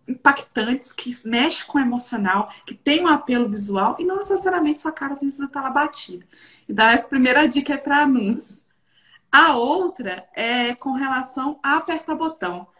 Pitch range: 235-300 Hz